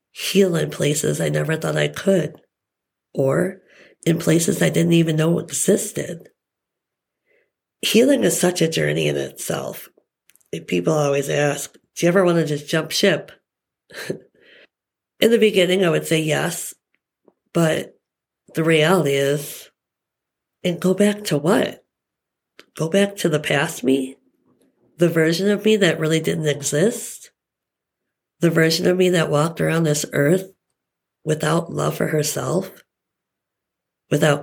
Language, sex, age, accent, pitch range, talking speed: English, female, 50-69, American, 150-190 Hz, 135 wpm